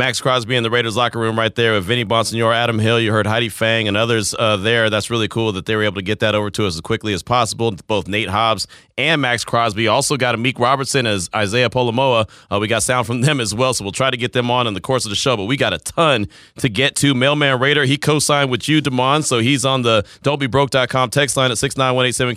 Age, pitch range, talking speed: 30-49, 115-150 Hz, 260 wpm